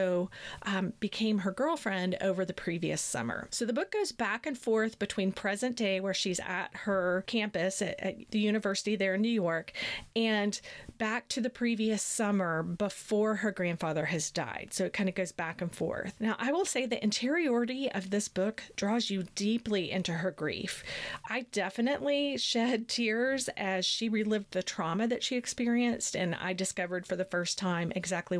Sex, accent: female, American